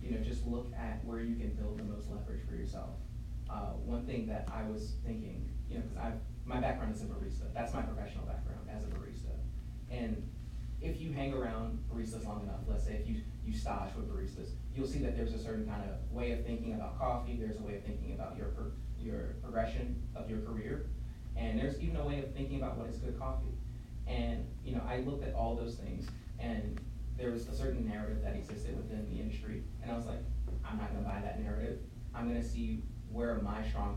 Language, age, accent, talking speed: English, 30-49, American, 220 wpm